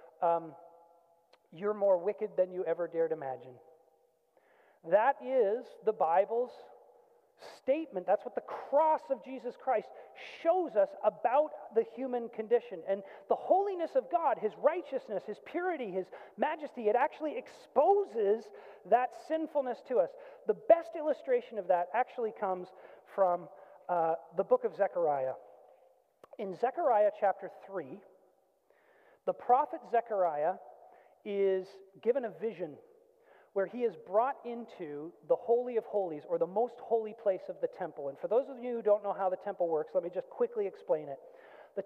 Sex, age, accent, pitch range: male, 40-59, American, 190-300 Hz